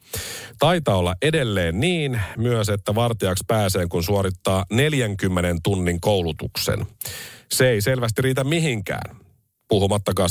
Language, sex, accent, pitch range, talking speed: Finnish, male, native, 100-135 Hz, 110 wpm